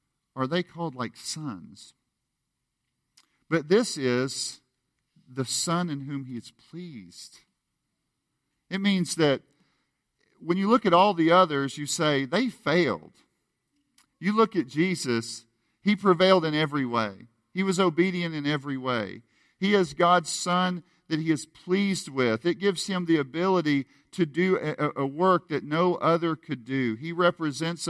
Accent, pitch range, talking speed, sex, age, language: American, 125-170 Hz, 150 wpm, male, 50-69, English